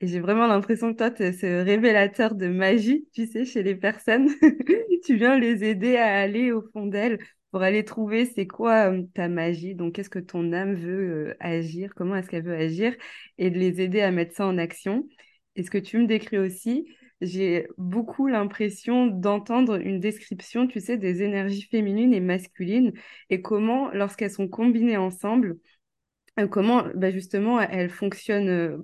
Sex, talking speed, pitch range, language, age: female, 180 wpm, 185-225 Hz, French, 20-39